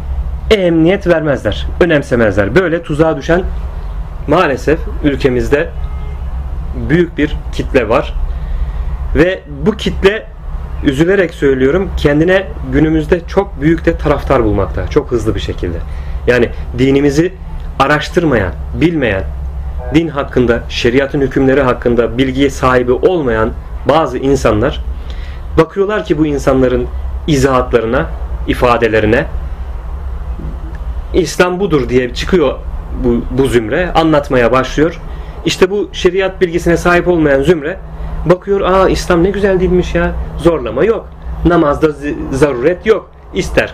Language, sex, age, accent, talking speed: Turkish, male, 30-49, native, 105 wpm